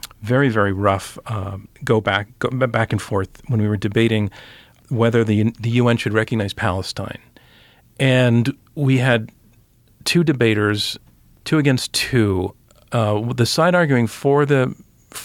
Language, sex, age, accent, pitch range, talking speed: English, male, 40-59, American, 105-125 Hz, 140 wpm